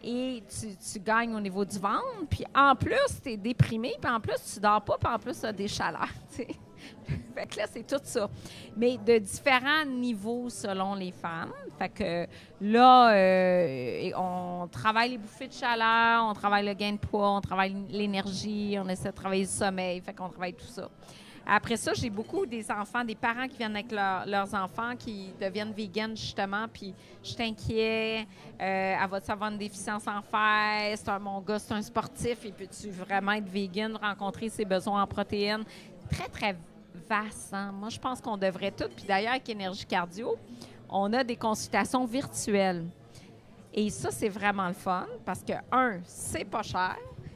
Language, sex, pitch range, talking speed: French, female, 195-230 Hz, 185 wpm